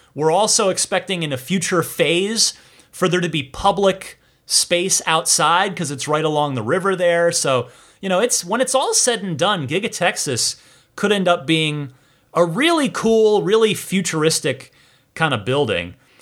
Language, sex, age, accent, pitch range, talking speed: English, male, 30-49, American, 140-190 Hz, 165 wpm